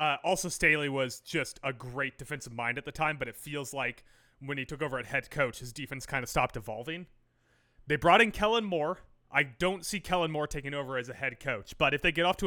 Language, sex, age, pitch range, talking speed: English, male, 30-49, 125-165 Hz, 245 wpm